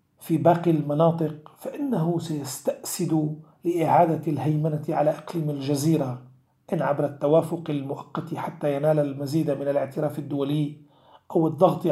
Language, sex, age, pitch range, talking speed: Arabic, male, 40-59, 145-165 Hz, 110 wpm